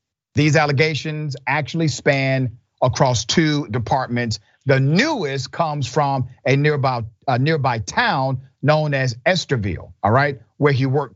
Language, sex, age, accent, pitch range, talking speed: English, male, 40-59, American, 120-160 Hz, 125 wpm